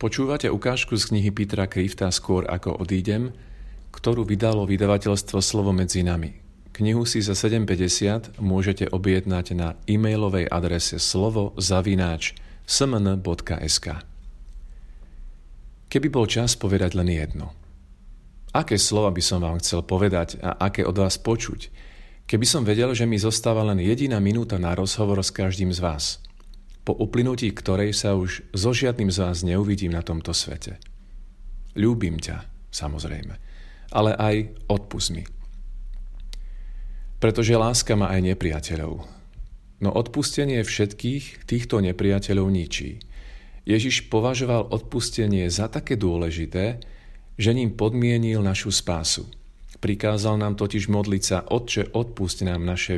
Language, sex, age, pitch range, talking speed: Slovak, male, 40-59, 90-110 Hz, 125 wpm